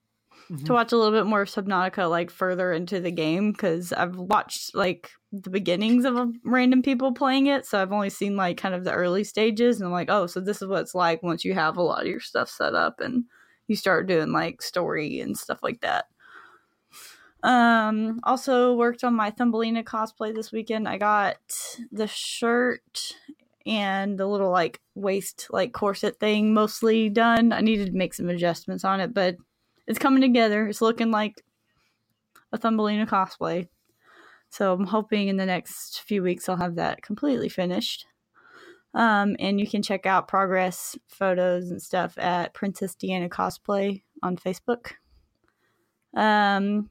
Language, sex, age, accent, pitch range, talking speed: English, female, 10-29, American, 185-225 Hz, 175 wpm